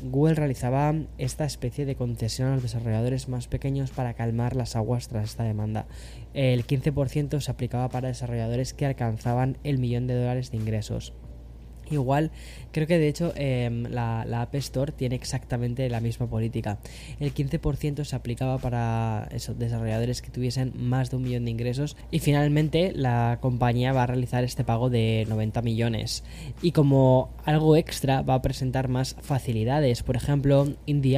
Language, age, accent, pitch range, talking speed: Spanish, 10-29, Spanish, 120-145 Hz, 165 wpm